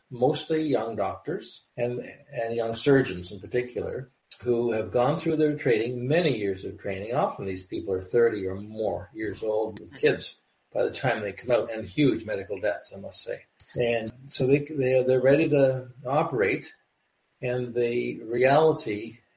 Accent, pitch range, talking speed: American, 115-140 Hz, 165 wpm